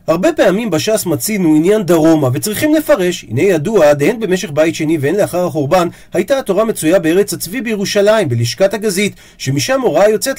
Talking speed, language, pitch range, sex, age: 160 wpm, Hebrew, 155-235 Hz, male, 40-59